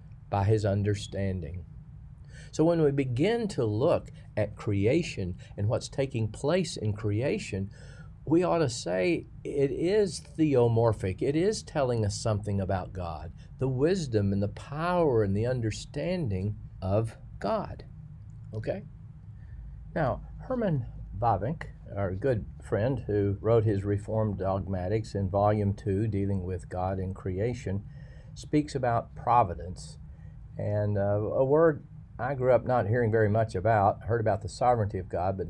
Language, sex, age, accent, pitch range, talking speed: English, male, 50-69, American, 100-135 Hz, 140 wpm